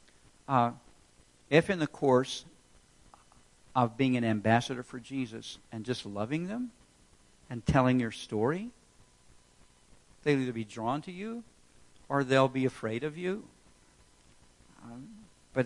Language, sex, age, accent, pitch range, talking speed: English, male, 60-79, American, 110-155 Hz, 125 wpm